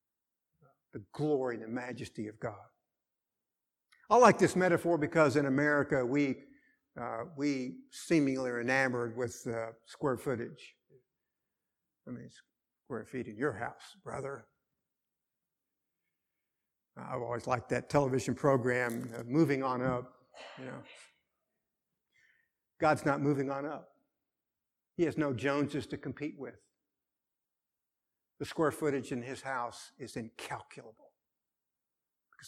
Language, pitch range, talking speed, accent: English, 125-150 Hz, 120 wpm, American